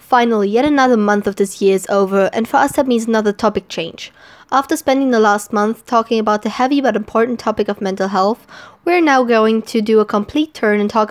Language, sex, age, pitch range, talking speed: English, female, 20-39, 205-240 Hz, 230 wpm